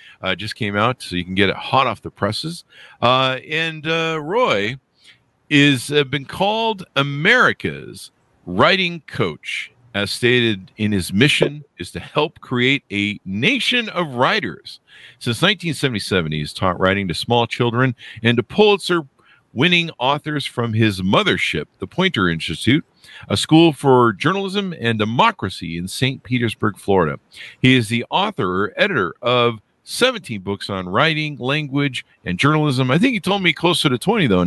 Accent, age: American, 50-69